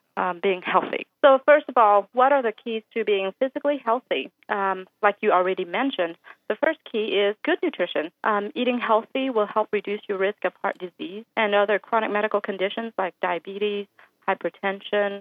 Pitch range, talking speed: 185-220 Hz, 180 wpm